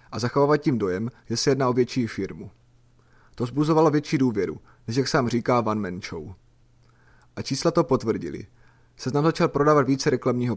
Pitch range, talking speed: 115-145 Hz, 160 wpm